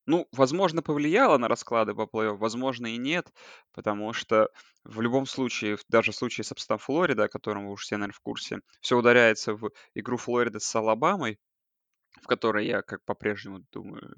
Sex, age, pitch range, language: male, 20-39, 105-130 Hz, Russian